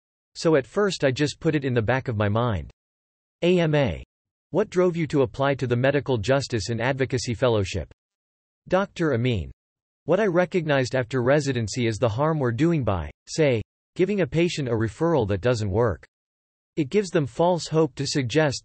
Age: 40-59